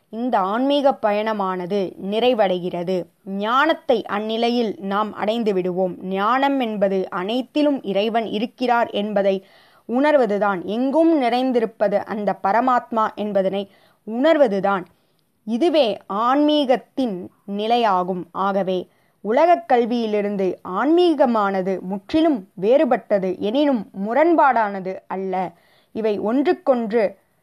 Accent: native